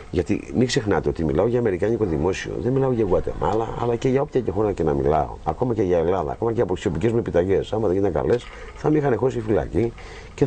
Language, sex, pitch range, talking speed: Greek, male, 85-130 Hz, 235 wpm